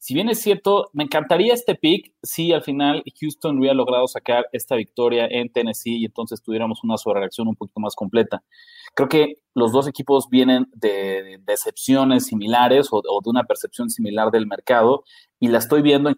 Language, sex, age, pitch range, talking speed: Spanish, male, 30-49, 120-165 Hz, 180 wpm